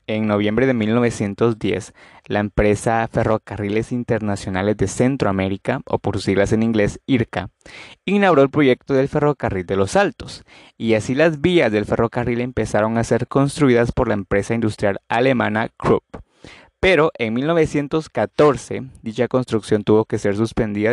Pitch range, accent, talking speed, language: 105-130 Hz, Mexican, 145 wpm, Spanish